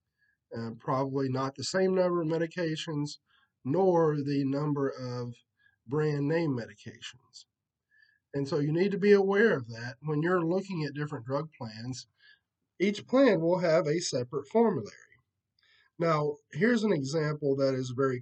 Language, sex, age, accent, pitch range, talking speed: English, male, 40-59, American, 135-180 Hz, 150 wpm